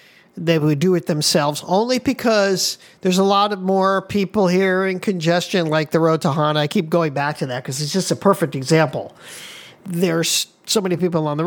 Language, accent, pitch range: English, American, 175-225 Hz